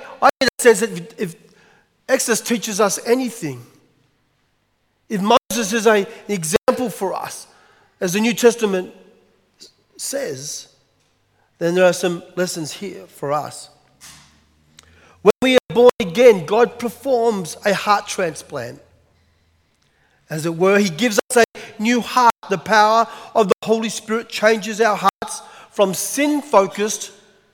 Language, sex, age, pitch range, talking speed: English, male, 40-59, 175-225 Hz, 135 wpm